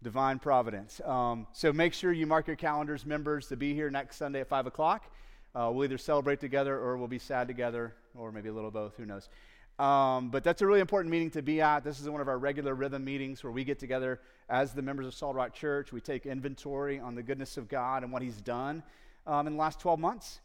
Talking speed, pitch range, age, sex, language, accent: 245 wpm, 120-140 Hz, 30-49, male, English, American